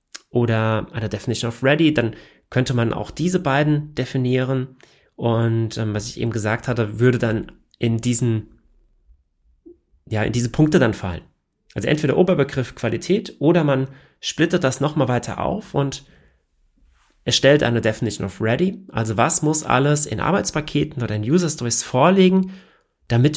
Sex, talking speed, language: male, 145 wpm, German